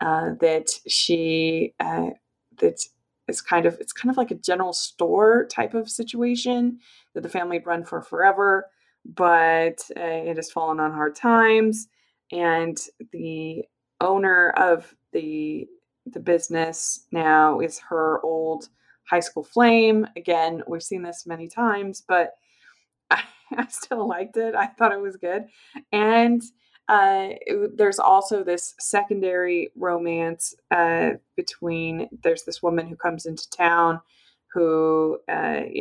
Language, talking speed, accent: English, 135 wpm, American